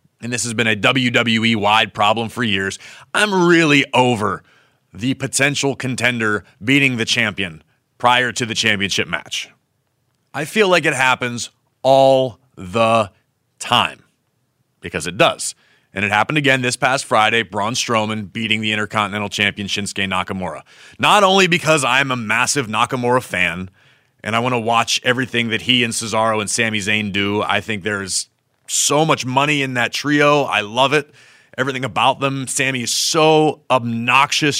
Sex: male